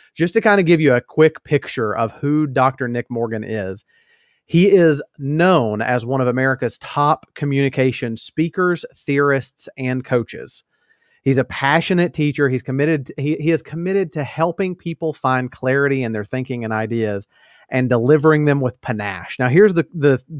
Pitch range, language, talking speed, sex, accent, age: 125-160 Hz, English, 170 wpm, male, American, 40-59